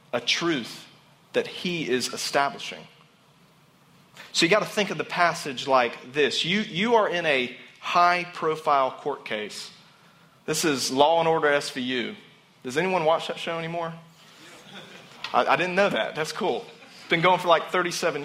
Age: 30-49